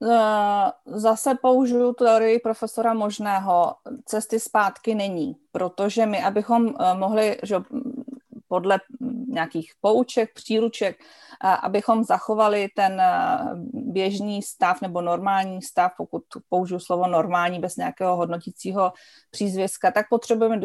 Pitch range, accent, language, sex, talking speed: 175-220 Hz, native, Czech, female, 100 wpm